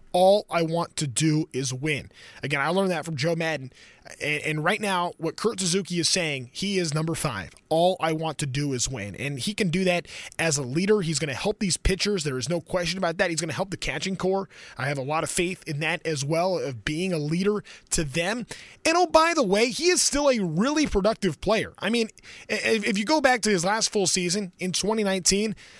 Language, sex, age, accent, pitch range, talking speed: English, male, 20-39, American, 160-205 Hz, 235 wpm